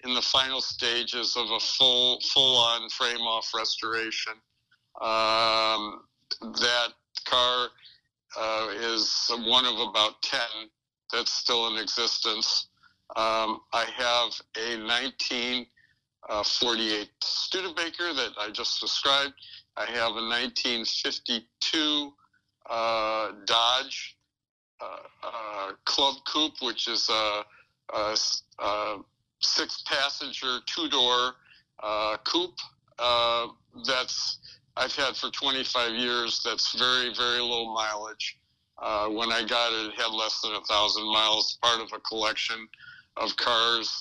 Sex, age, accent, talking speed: male, 60-79, American, 115 wpm